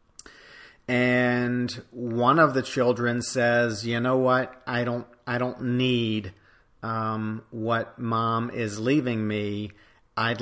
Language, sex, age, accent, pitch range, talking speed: English, male, 40-59, American, 110-120 Hz, 120 wpm